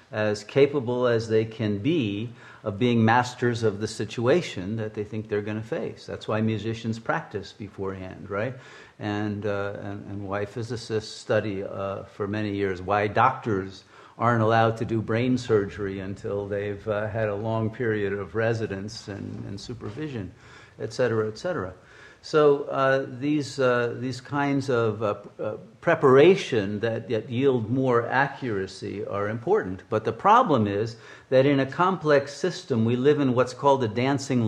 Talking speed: 160 wpm